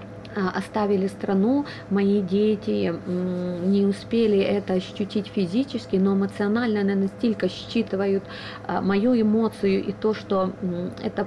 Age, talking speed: 30-49, 105 wpm